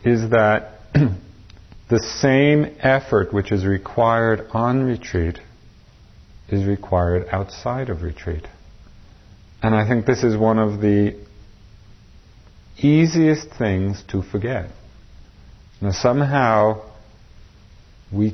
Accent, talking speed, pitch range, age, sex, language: American, 95 wpm, 100-120 Hz, 50-69, male, English